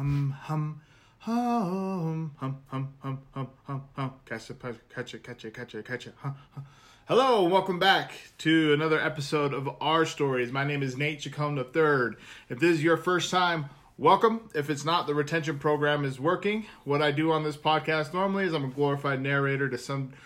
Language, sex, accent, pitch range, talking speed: English, male, American, 135-165 Hz, 195 wpm